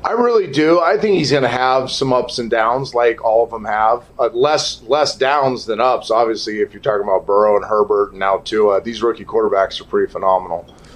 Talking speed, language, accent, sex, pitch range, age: 225 wpm, English, American, male, 115-145 Hz, 30-49